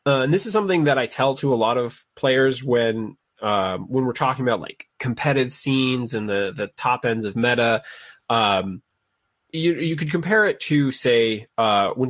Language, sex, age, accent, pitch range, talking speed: English, male, 20-39, American, 115-135 Hz, 195 wpm